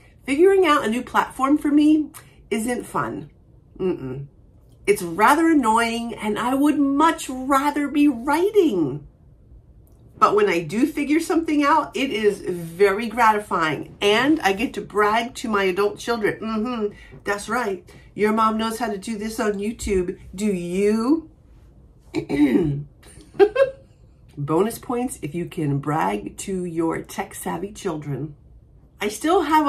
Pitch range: 180-240 Hz